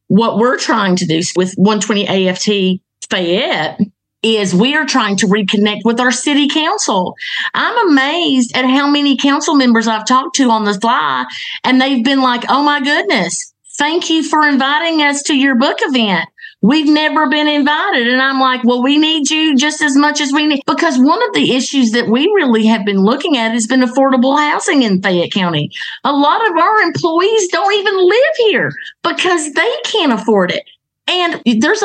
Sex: female